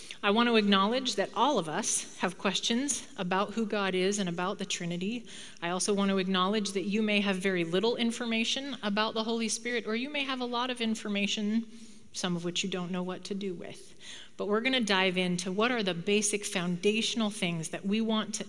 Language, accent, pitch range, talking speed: English, American, 180-220 Hz, 215 wpm